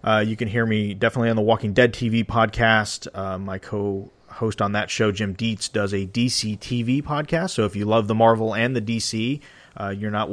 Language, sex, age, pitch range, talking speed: English, male, 30-49, 105-120 Hz, 215 wpm